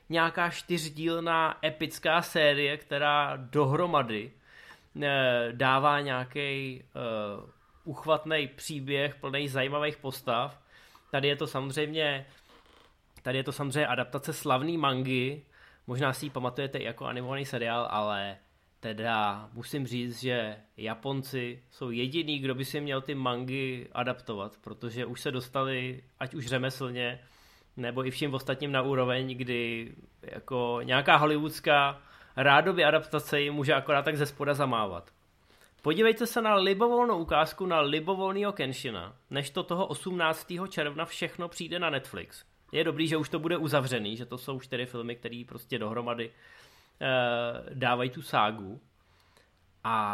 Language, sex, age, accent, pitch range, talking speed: Czech, male, 20-39, native, 125-150 Hz, 130 wpm